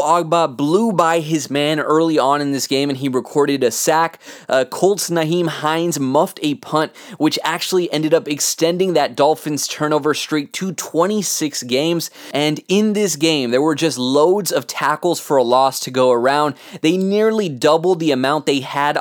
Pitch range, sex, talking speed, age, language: 145-170 Hz, male, 180 wpm, 20-39, English